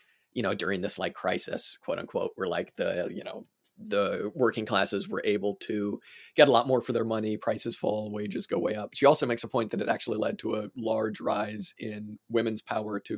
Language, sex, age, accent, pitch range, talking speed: English, male, 30-49, American, 105-125 Hz, 225 wpm